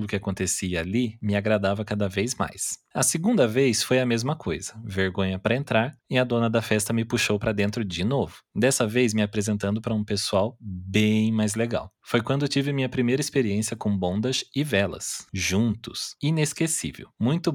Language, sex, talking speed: Portuguese, male, 180 wpm